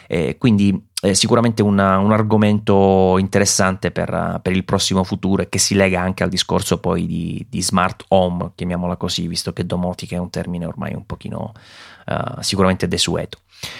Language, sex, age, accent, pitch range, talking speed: Italian, male, 30-49, native, 95-110 Hz, 170 wpm